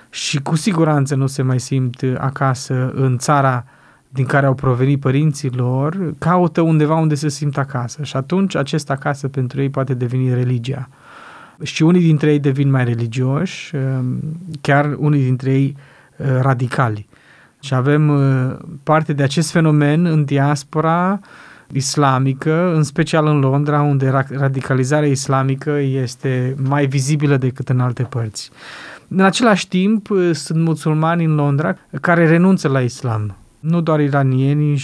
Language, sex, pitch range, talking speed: Romanian, male, 130-150 Hz, 140 wpm